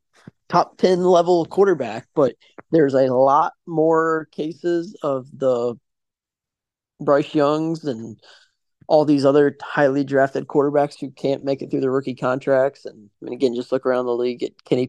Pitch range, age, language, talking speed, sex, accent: 120-150 Hz, 20-39, English, 160 wpm, male, American